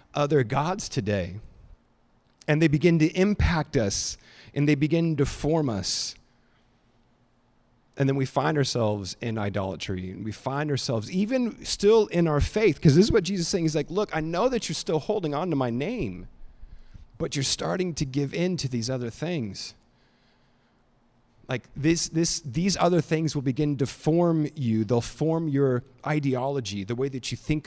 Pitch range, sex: 115-150 Hz, male